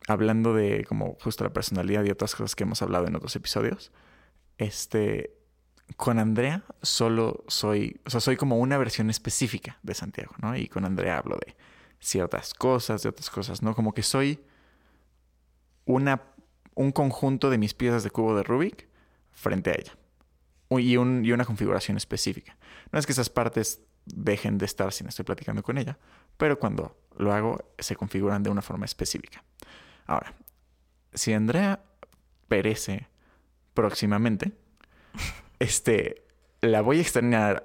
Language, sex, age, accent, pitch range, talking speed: Spanish, male, 20-39, Mexican, 100-125 Hz, 155 wpm